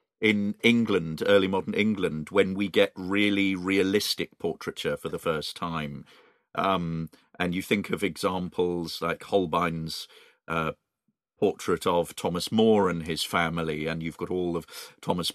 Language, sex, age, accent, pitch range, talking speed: English, male, 40-59, British, 80-110 Hz, 145 wpm